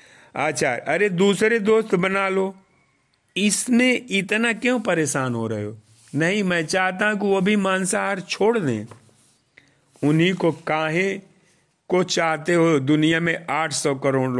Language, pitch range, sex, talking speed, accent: Hindi, 140-185 Hz, male, 130 wpm, native